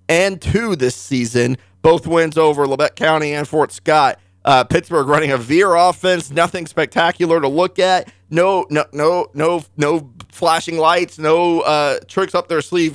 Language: English